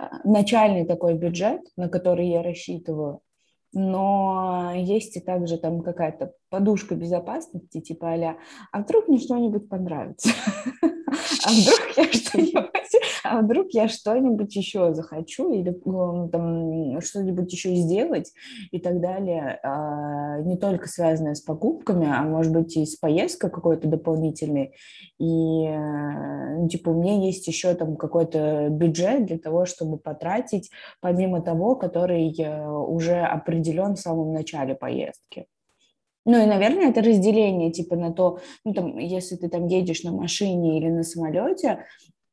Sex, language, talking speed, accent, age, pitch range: female, Russian, 130 wpm, native, 20-39, 165-195 Hz